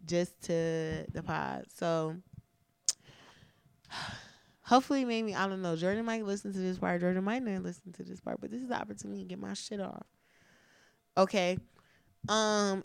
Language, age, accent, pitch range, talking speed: English, 20-39, American, 165-220 Hz, 165 wpm